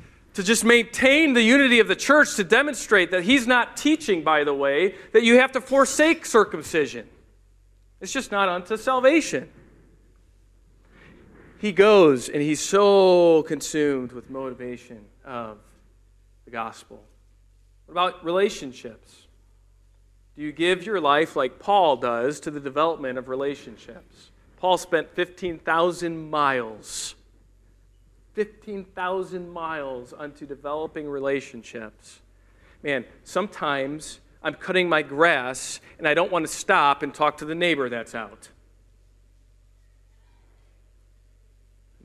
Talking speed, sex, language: 120 wpm, male, English